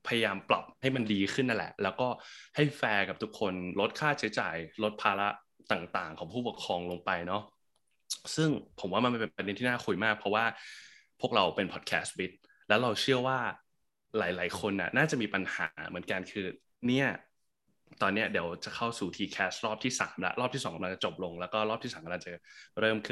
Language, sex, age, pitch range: Thai, male, 20-39, 95-120 Hz